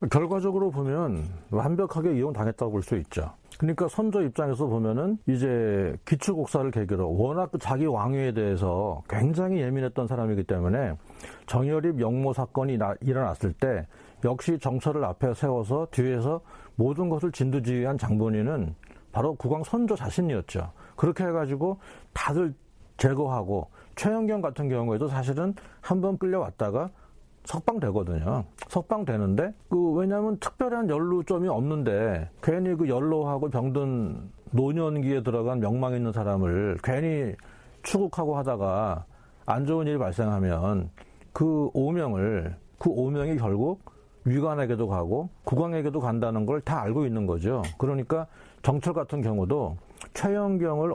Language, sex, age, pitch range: Korean, male, 40-59, 110-160 Hz